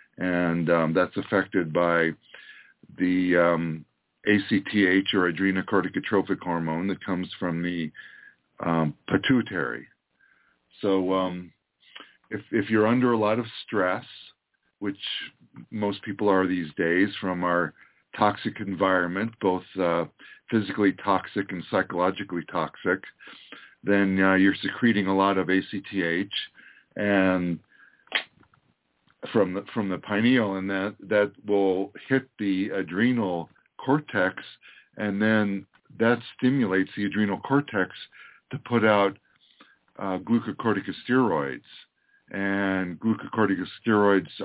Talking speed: 110 wpm